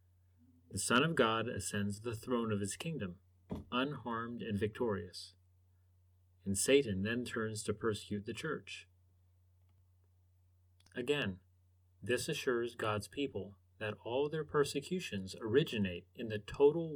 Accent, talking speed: American, 120 wpm